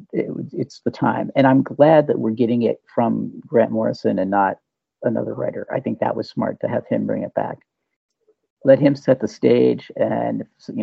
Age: 50-69